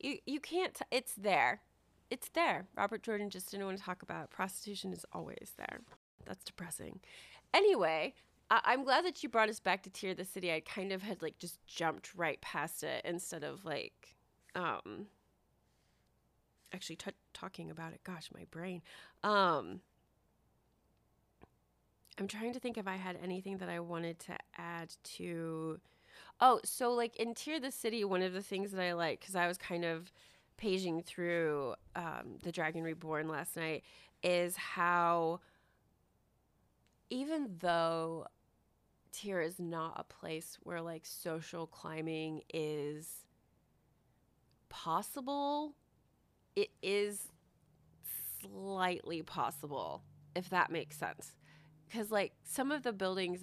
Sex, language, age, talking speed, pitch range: female, English, 30-49, 150 wpm, 165-205 Hz